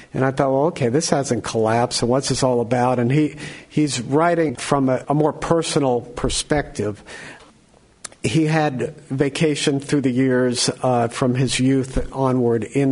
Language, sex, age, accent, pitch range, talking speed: English, male, 50-69, American, 125-150 Hz, 165 wpm